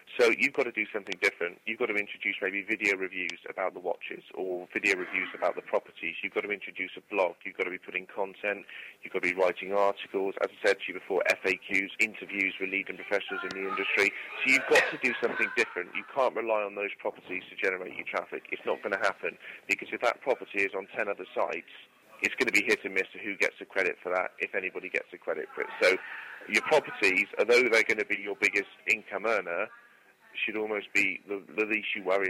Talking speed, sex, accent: 235 wpm, male, British